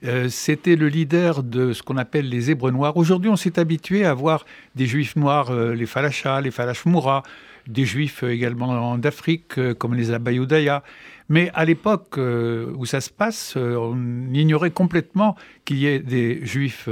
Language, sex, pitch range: French, male, 130-175 Hz